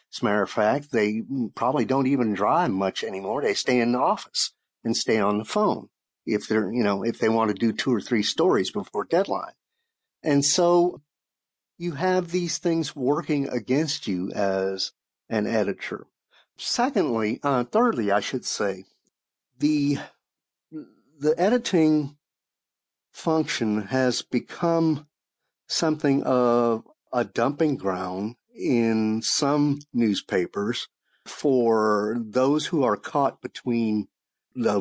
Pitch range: 110-150 Hz